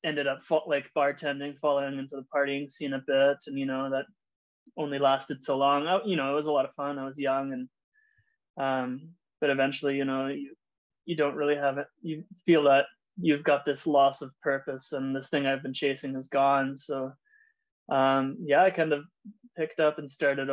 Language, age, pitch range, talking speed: English, 20-39, 135-150 Hz, 200 wpm